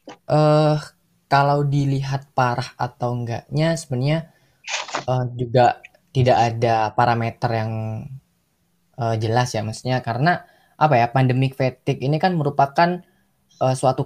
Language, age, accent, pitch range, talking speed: Indonesian, 20-39, native, 125-155 Hz, 115 wpm